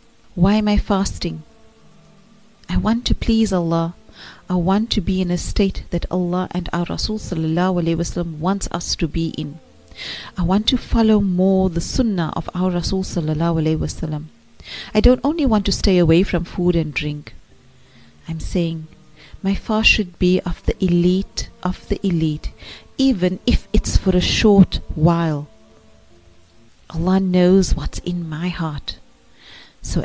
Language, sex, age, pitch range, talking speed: English, female, 40-59, 160-190 Hz, 145 wpm